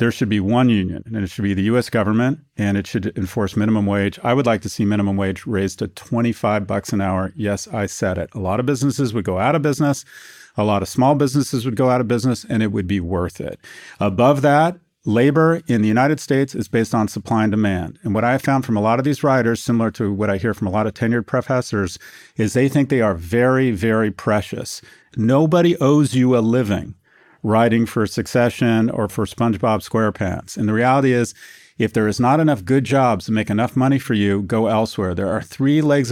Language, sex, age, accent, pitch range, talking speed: English, male, 40-59, American, 105-130 Hz, 230 wpm